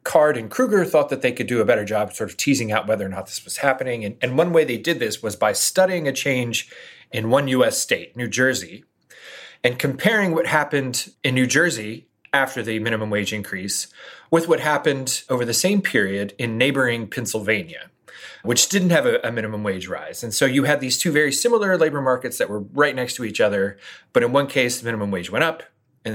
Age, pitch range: 30-49, 105-140 Hz